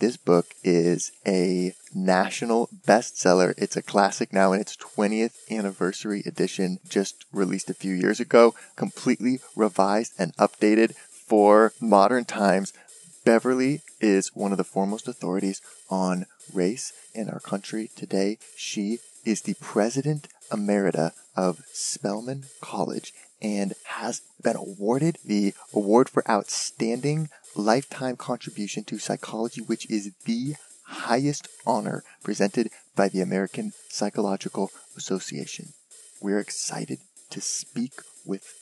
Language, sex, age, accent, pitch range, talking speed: English, male, 20-39, American, 95-115 Hz, 120 wpm